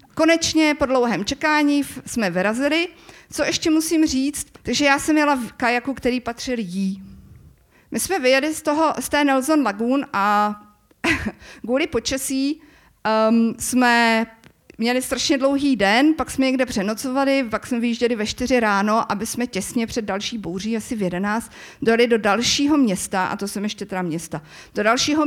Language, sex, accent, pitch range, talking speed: Czech, female, native, 190-255 Hz, 160 wpm